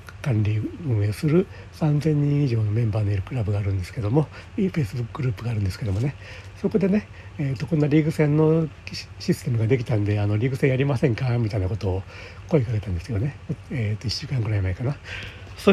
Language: Japanese